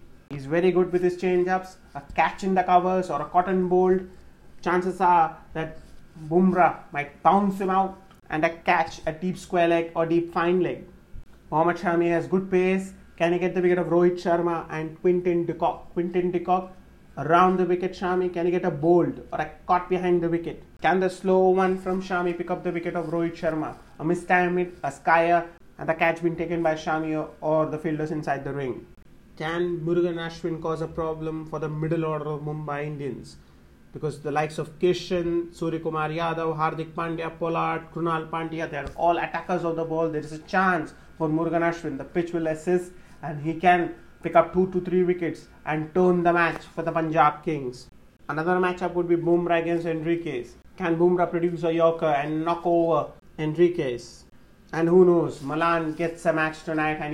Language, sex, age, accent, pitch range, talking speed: English, male, 30-49, Indian, 160-180 Hz, 190 wpm